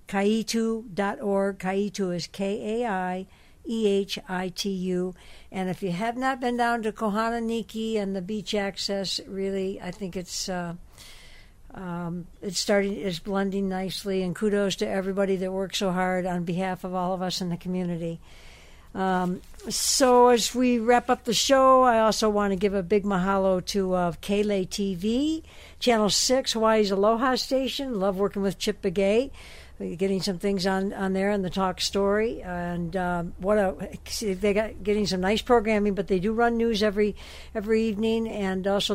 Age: 60-79